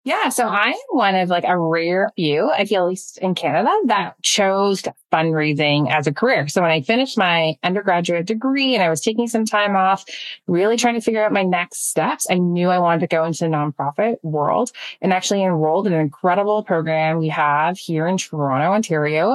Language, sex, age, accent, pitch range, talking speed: English, female, 30-49, American, 160-210 Hz, 205 wpm